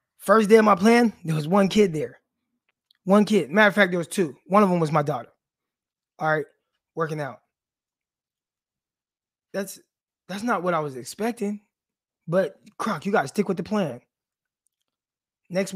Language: English